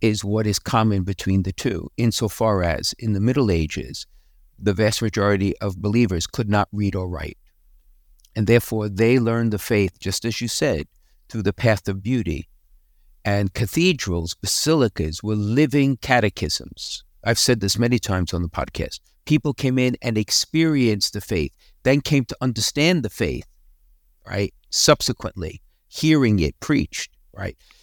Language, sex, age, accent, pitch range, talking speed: English, male, 50-69, American, 95-125 Hz, 155 wpm